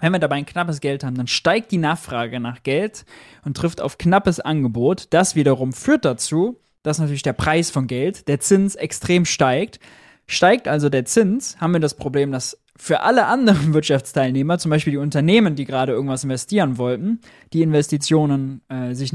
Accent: German